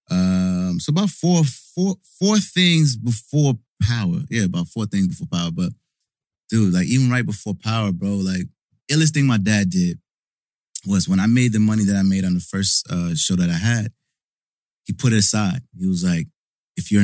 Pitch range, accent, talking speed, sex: 100-165 Hz, American, 195 wpm, male